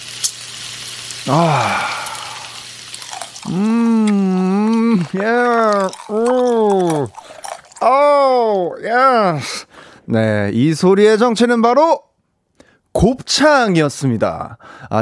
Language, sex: Korean, male